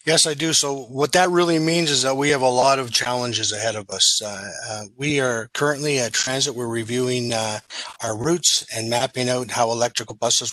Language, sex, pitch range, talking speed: English, male, 115-135 Hz, 210 wpm